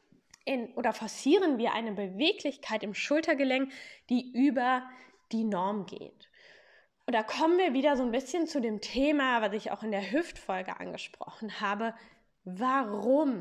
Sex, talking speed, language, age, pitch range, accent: female, 145 wpm, German, 10-29, 205-265 Hz, German